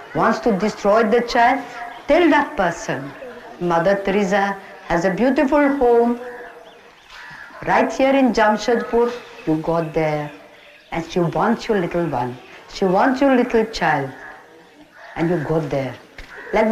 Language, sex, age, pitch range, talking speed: English, female, 60-79, 175-250 Hz, 135 wpm